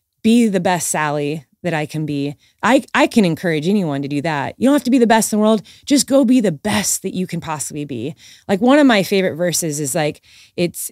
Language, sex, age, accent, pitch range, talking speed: English, female, 20-39, American, 180-230 Hz, 245 wpm